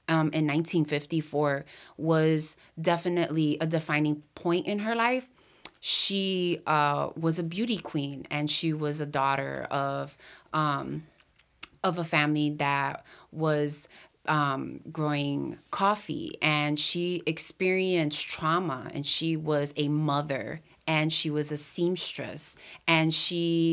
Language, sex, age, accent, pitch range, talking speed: English, female, 20-39, American, 145-170 Hz, 120 wpm